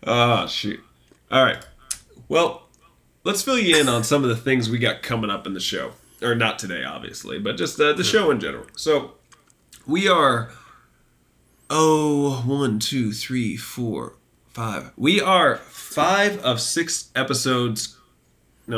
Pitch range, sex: 105-130 Hz, male